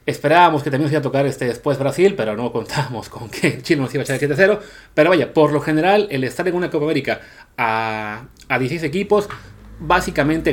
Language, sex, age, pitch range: Spanish, male, 30-49, 120-150 Hz